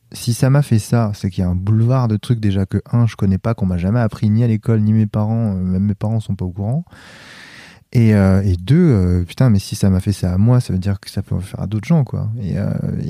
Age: 20-39